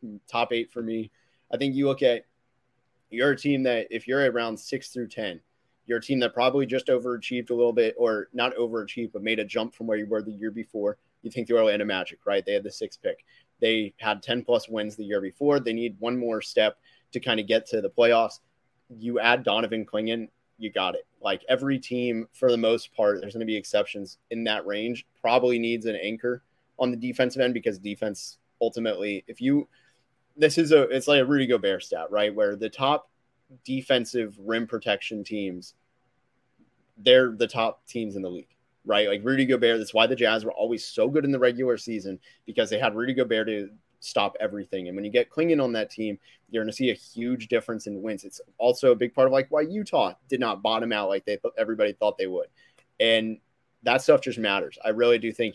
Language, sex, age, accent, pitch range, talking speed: English, male, 30-49, American, 110-130 Hz, 215 wpm